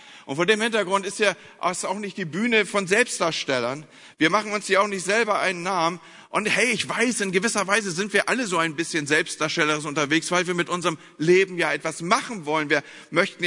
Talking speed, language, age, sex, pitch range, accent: 215 wpm, German, 40-59, male, 180-225 Hz, German